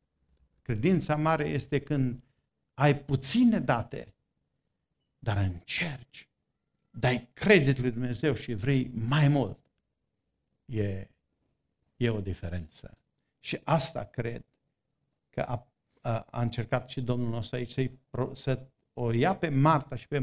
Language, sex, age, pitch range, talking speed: Romanian, male, 50-69, 115-135 Hz, 120 wpm